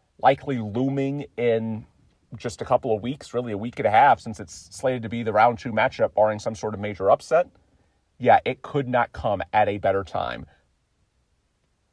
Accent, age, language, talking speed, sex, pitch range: American, 40-59, English, 190 wpm, male, 110-135 Hz